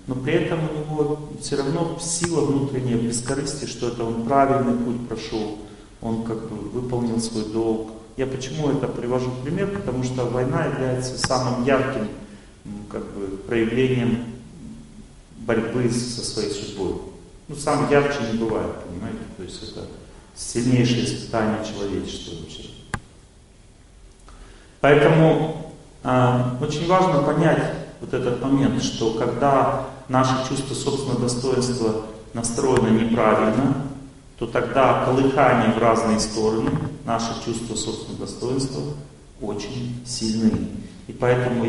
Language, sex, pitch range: Russian, male, 115-135 Hz